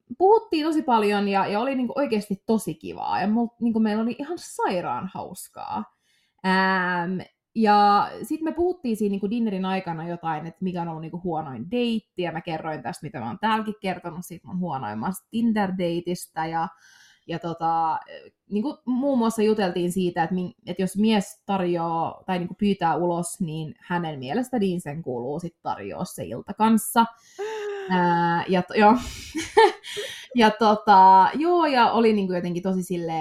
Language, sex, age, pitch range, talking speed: Finnish, female, 20-39, 170-245 Hz, 150 wpm